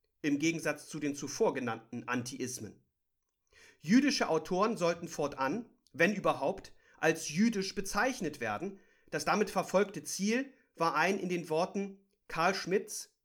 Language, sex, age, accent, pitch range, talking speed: German, male, 40-59, German, 145-200 Hz, 125 wpm